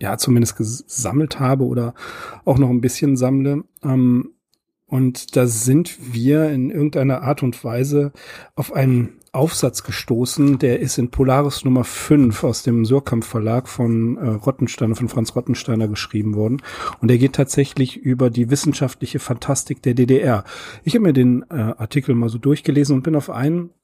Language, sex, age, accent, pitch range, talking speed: German, male, 40-59, German, 125-150 Hz, 160 wpm